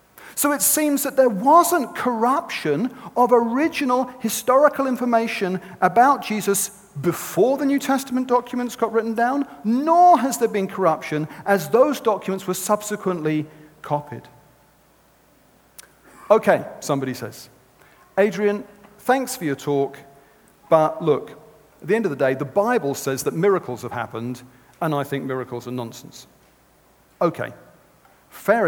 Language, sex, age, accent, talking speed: English, male, 40-59, British, 130 wpm